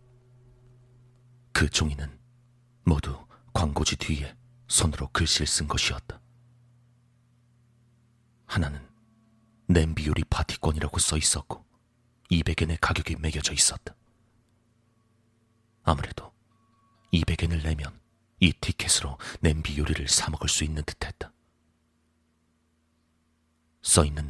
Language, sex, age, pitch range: Korean, male, 40-59, 80-95 Hz